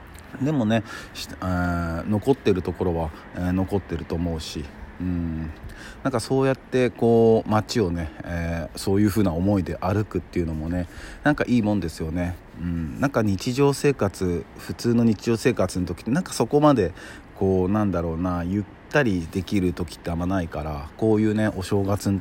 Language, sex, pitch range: Japanese, male, 85-105 Hz